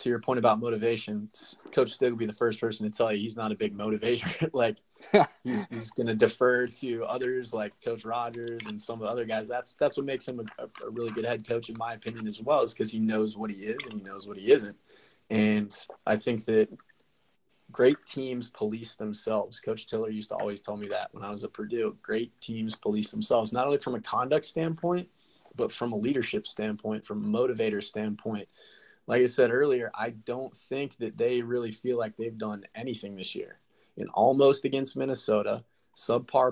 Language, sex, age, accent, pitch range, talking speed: English, male, 20-39, American, 110-130 Hz, 210 wpm